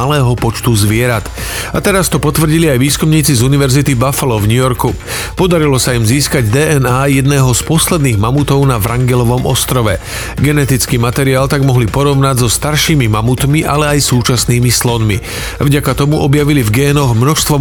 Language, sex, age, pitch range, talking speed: Slovak, male, 40-59, 120-145 Hz, 155 wpm